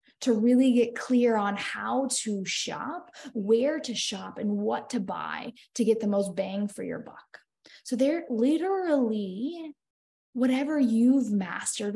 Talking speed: 145 wpm